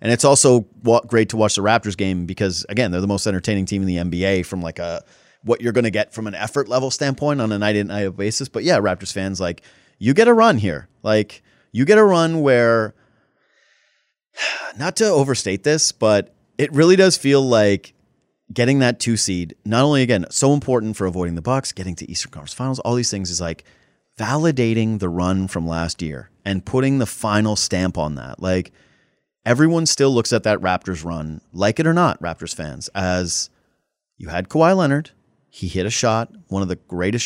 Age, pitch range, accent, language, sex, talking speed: 30-49, 95-125 Hz, American, English, male, 205 wpm